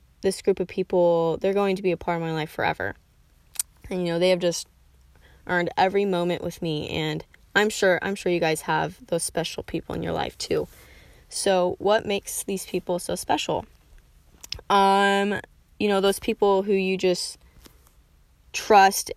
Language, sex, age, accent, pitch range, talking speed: English, female, 10-29, American, 170-200 Hz, 175 wpm